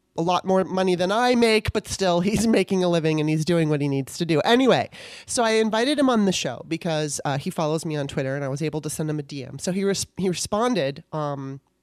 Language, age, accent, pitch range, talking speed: English, 30-49, American, 150-195 Hz, 255 wpm